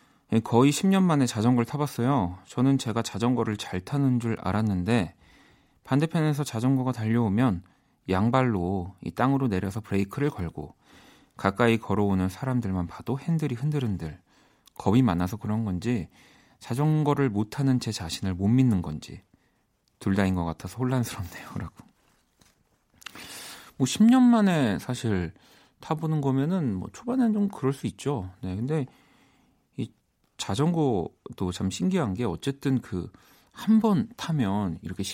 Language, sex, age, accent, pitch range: Korean, male, 40-59, native, 95-140 Hz